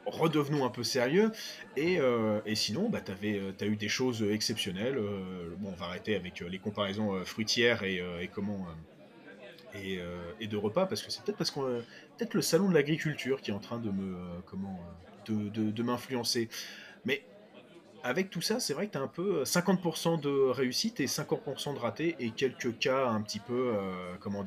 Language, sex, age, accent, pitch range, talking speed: French, male, 30-49, French, 105-145 Hz, 215 wpm